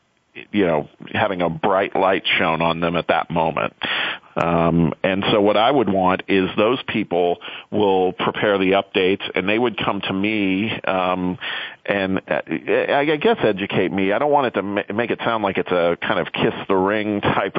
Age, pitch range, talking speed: 40-59, 90-105 Hz, 190 wpm